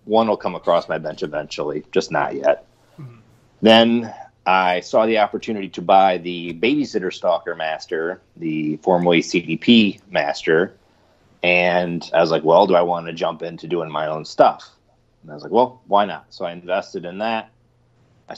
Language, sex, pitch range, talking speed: English, male, 90-110 Hz, 175 wpm